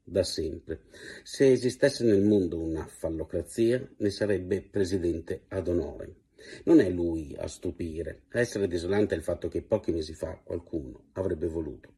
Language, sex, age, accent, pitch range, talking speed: Italian, male, 50-69, native, 85-110 Hz, 150 wpm